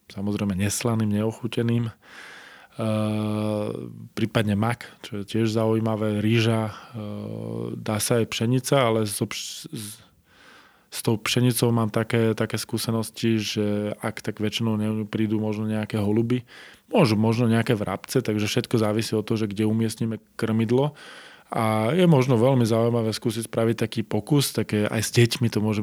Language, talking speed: Slovak, 140 wpm